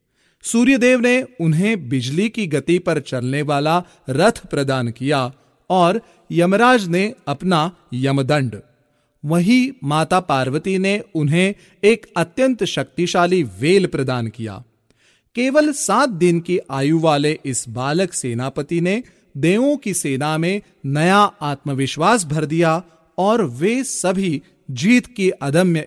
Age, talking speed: 40-59, 120 wpm